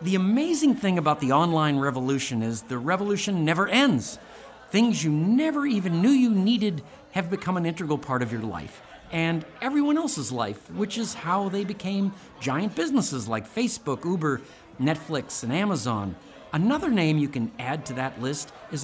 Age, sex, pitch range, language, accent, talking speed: 50-69, male, 140-210 Hz, English, American, 170 wpm